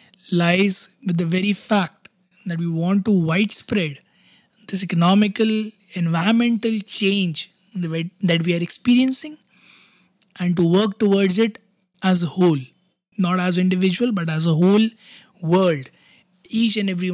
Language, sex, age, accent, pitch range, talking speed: Hindi, male, 20-39, native, 175-205 Hz, 135 wpm